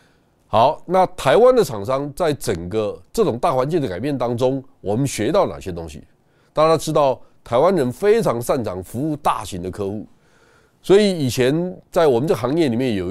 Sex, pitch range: male, 110-165 Hz